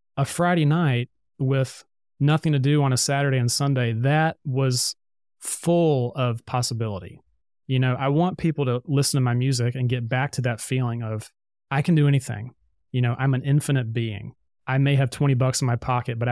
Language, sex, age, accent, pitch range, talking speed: English, male, 30-49, American, 120-145 Hz, 195 wpm